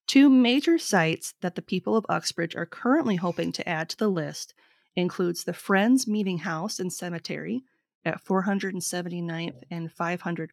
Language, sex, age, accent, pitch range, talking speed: English, female, 30-49, American, 170-215 Hz, 155 wpm